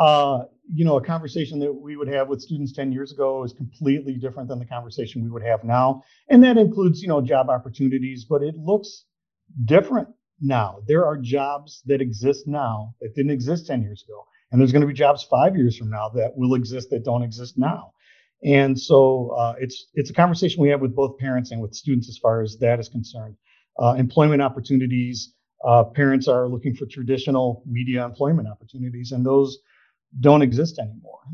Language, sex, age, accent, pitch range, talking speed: English, male, 40-59, American, 125-155 Hz, 195 wpm